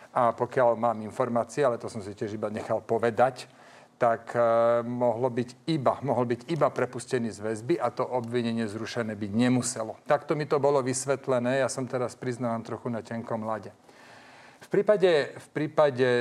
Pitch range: 115-135 Hz